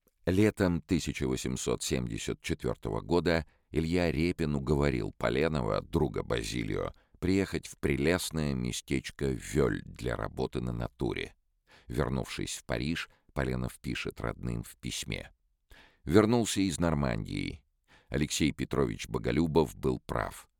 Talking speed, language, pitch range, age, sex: 100 wpm, Russian, 65-85 Hz, 50-69, male